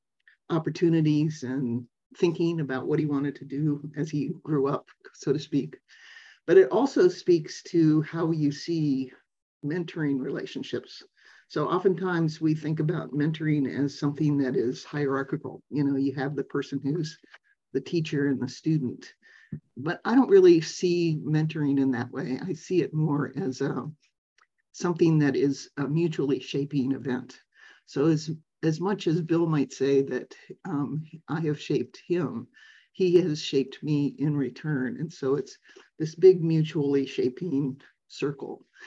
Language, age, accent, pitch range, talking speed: English, 50-69, American, 140-165 Hz, 155 wpm